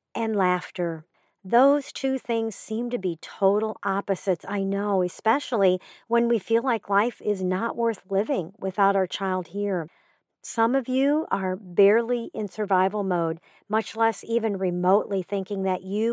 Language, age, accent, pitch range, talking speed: English, 50-69, American, 190-225 Hz, 155 wpm